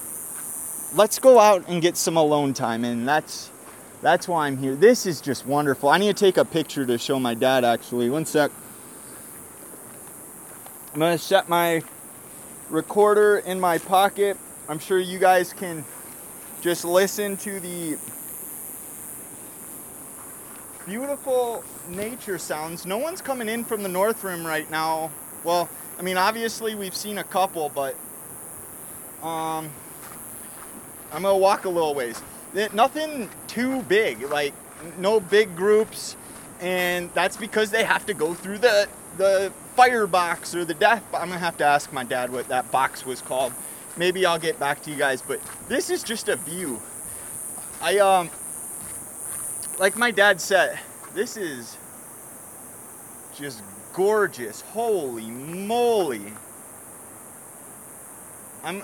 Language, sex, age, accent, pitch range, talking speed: English, male, 20-39, American, 155-210 Hz, 140 wpm